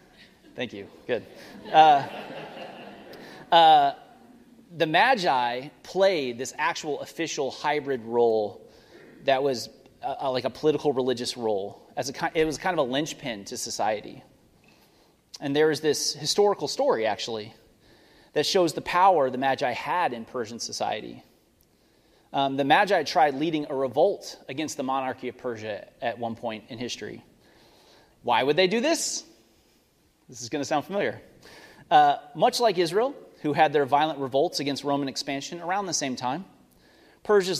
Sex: male